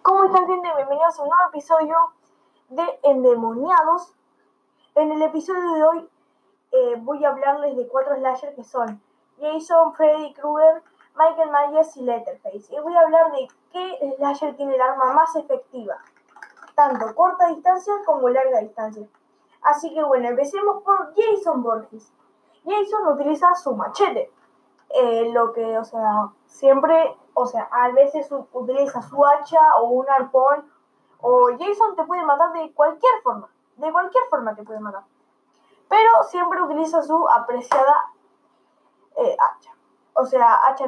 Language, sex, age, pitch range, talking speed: Spanish, female, 10-29, 255-345 Hz, 145 wpm